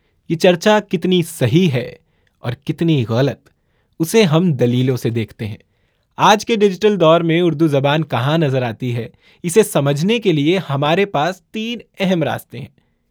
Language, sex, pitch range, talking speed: Urdu, male, 130-180 Hz, 160 wpm